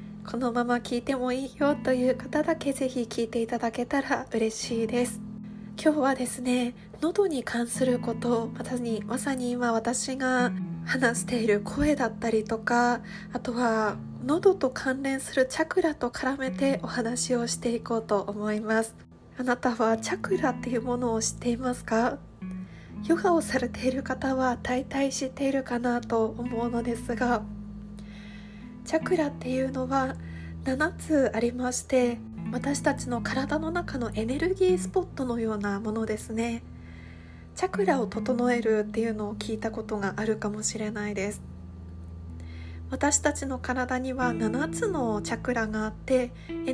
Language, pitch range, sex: Japanese, 215-255 Hz, female